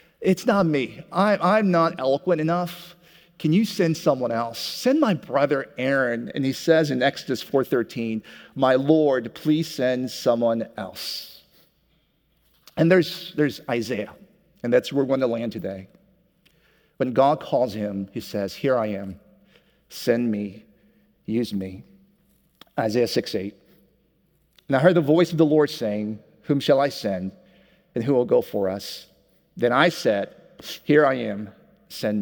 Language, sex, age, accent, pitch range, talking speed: English, male, 50-69, American, 115-165 Hz, 150 wpm